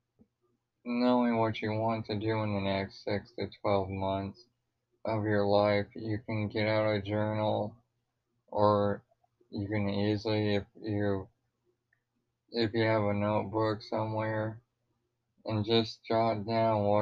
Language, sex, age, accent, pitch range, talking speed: English, male, 20-39, American, 100-115 Hz, 140 wpm